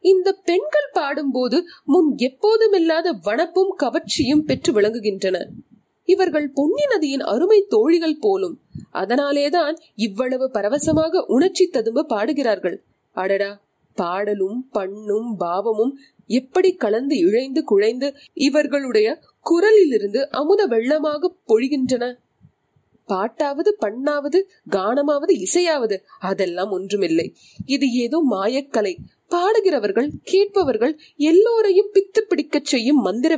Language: Tamil